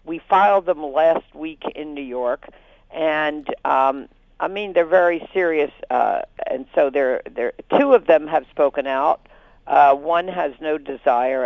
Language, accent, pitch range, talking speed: English, American, 135-185 Hz, 155 wpm